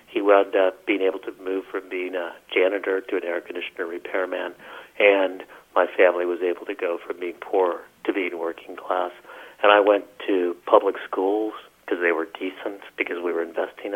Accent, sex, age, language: American, male, 40-59, English